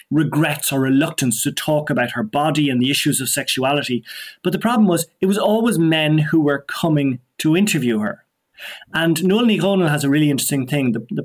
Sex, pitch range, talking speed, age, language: male, 130-170 Hz, 195 wpm, 30-49, English